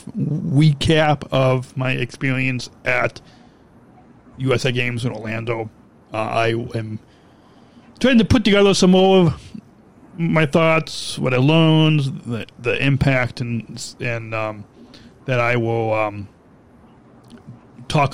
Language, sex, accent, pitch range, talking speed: English, male, American, 120-150 Hz, 115 wpm